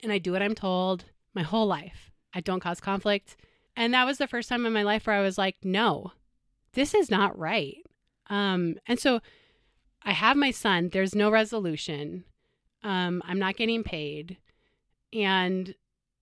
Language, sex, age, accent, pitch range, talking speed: English, female, 30-49, American, 180-220 Hz, 175 wpm